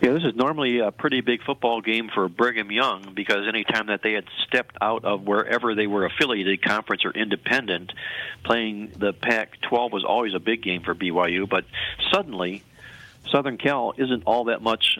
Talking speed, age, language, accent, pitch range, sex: 185 wpm, 50-69, English, American, 95-115 Hz, male